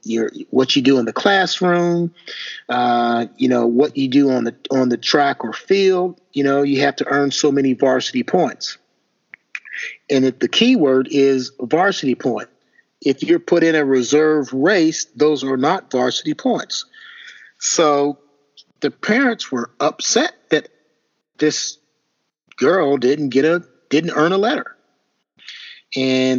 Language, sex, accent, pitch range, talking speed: English, male, American, 135-195 Hz, 150 wpm